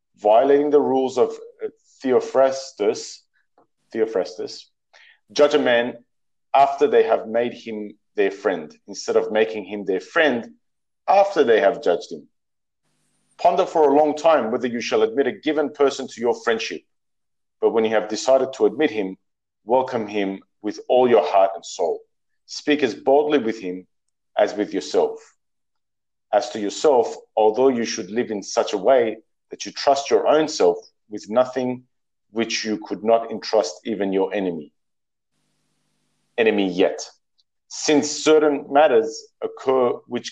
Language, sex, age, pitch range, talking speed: English, male, 40-59, 110-155 Hz, 150 wpm